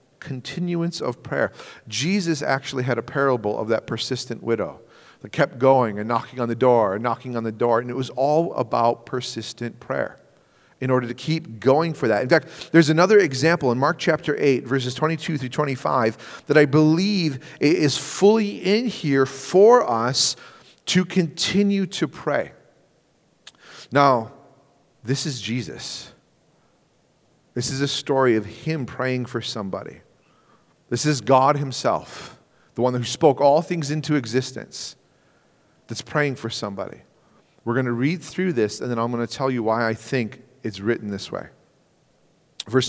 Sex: male